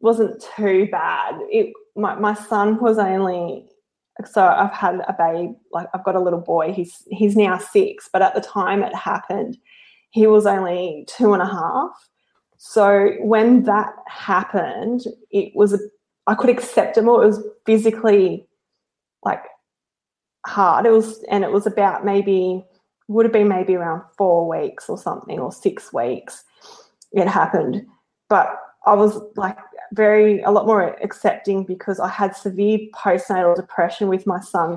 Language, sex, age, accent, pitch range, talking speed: English, female, 20-39, Australian, 190-215 Hz, 160 wpm